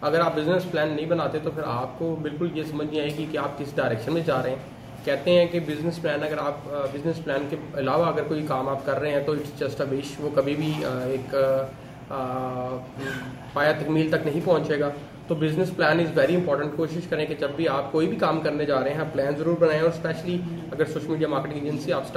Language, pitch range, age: English, 145-170 Hz, 20-39